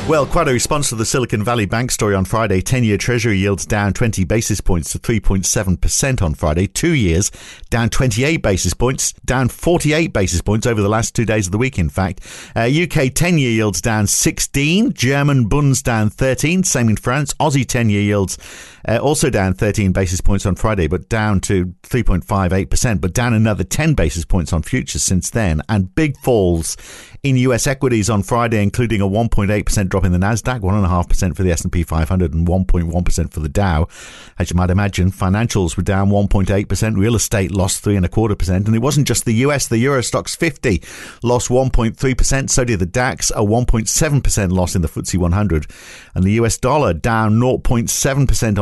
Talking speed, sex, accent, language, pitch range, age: 185 wpm, male, British, English, 95-125 Hz, 50-69